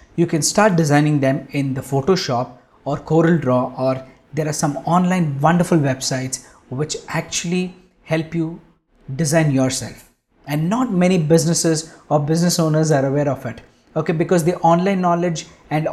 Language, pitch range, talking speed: English, 145-175 Hz, 150 wpm